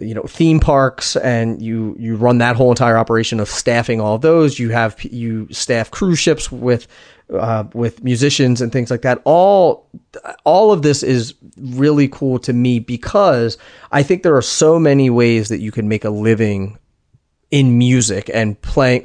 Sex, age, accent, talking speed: male, 30-49, American, 185 wpm